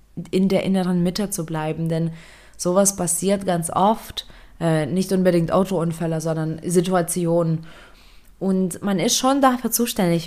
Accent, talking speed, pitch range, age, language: German, 130 wpm, 165-195 Hz, 20-39, German